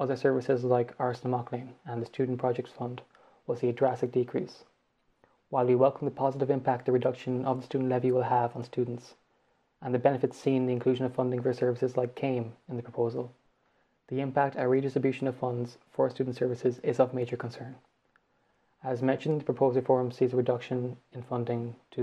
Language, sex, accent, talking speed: English, male, Irish, 195 wpm